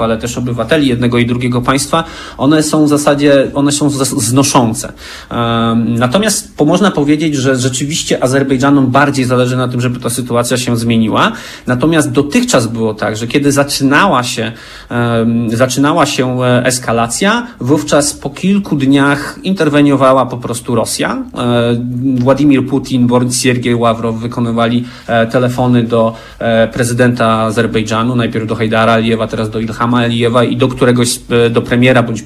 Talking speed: 145 wpm